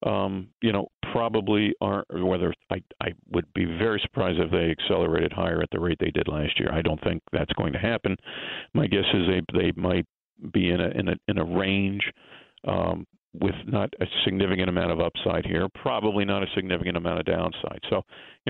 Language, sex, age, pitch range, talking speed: English, male, 50-69, 90-100 Hz, 200 wpm